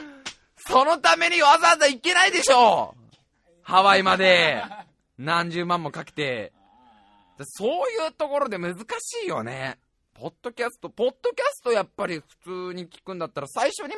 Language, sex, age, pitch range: Japanese, male, 20-39, 135-220 Hz